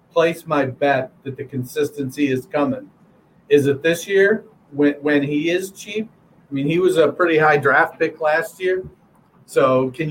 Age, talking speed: 40-59, 180 wpm